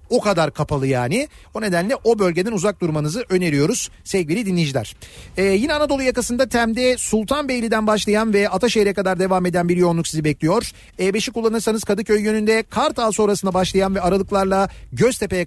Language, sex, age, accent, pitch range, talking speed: Turkish, male, 40-59, native, 170-225 Hz, 155 wpm